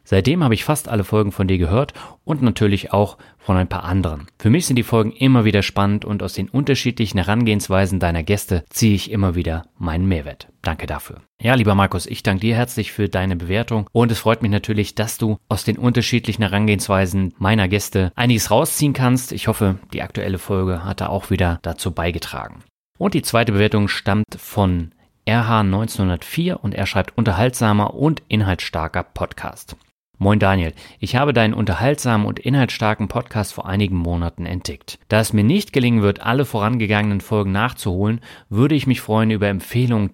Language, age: German, 30-49